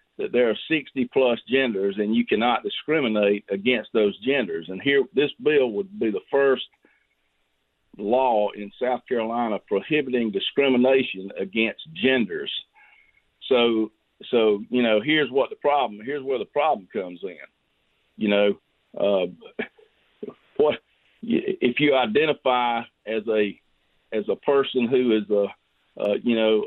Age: 50-69